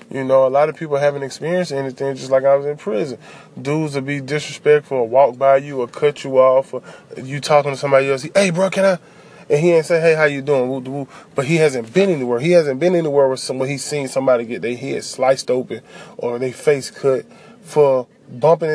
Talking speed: 225 wpm